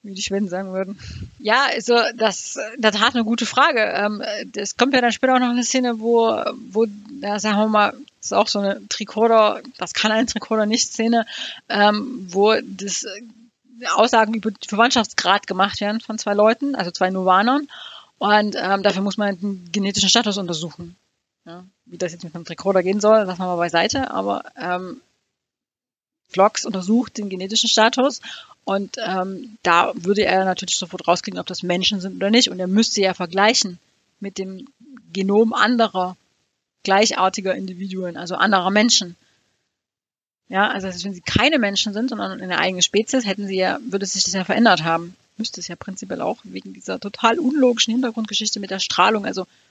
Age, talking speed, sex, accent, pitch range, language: 30-49, 175 wpm, female, German, 190-230 Hz, German